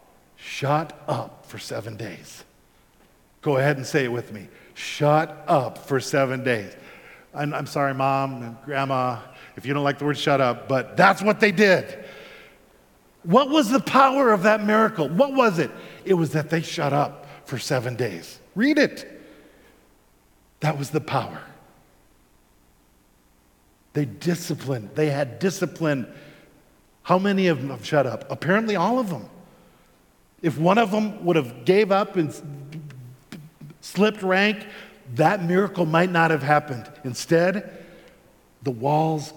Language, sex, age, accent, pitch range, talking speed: English, male, 50-69, American, 130-180 Hz, 150 wpm